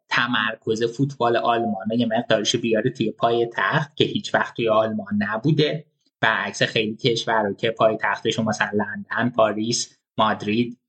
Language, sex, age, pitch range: Persian, male, 20-39, 110-135 Hz